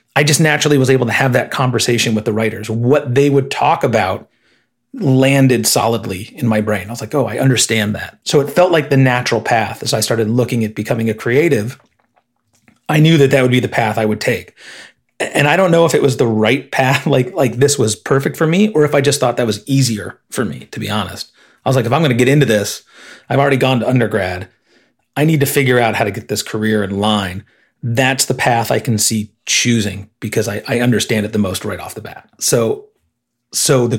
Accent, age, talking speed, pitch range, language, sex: American, 30-49, 235 wpm, 110-140 Hz, English, male